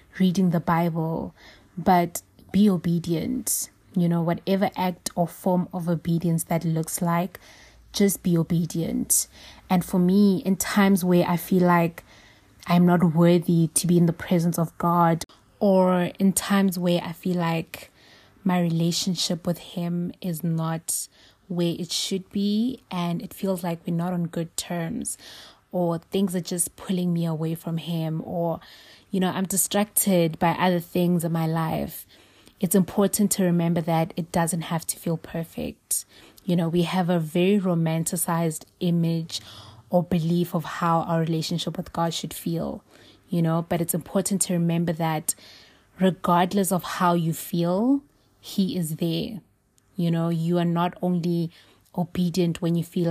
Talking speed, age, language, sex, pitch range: 160 wpm, 20-39, English, female, 165-185 Hz